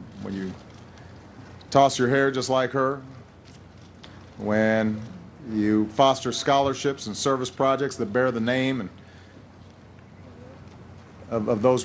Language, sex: English, male